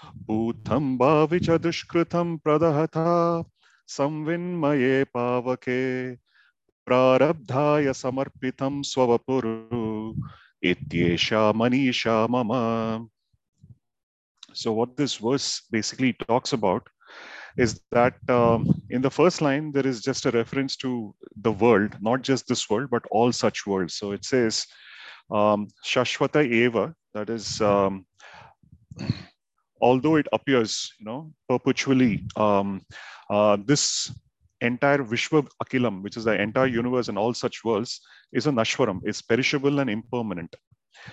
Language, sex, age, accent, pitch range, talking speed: English, male, 30-49, Indian, 110-135 Hz, 100 wpm